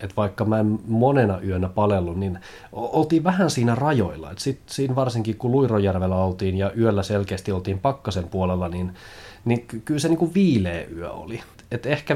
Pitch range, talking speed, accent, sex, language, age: 90-110 Hz, 180 wpm, native, male, Finnish, 30-49